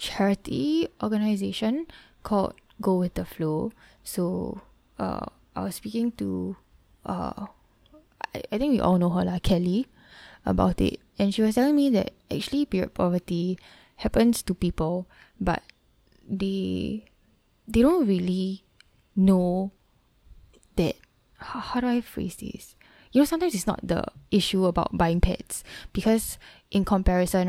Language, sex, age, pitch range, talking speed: English, female, 10-29, 180-215 Hz, 140 wpm